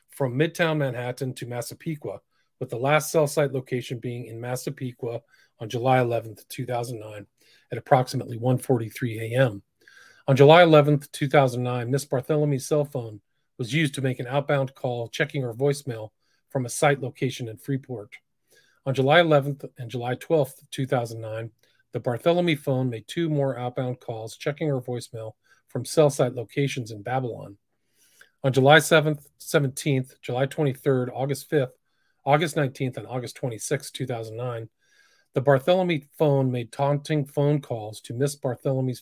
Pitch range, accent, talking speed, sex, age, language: 120-145 Hz, American, 145 wpm, male, 40-59, English